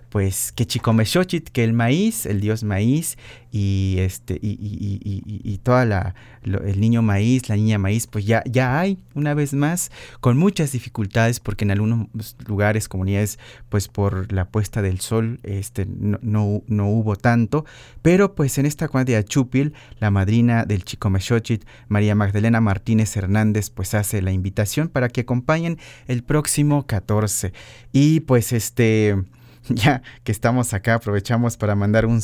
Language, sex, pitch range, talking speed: Spanish, male, 105-130 Hz, 165 wpm